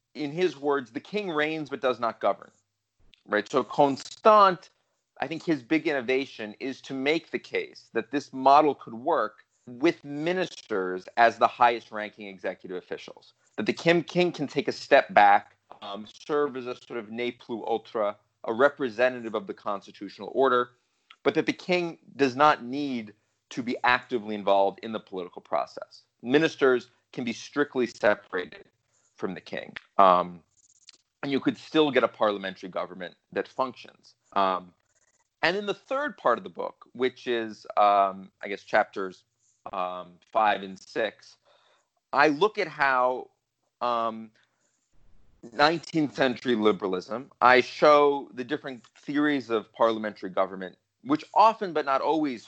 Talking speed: 150 wpm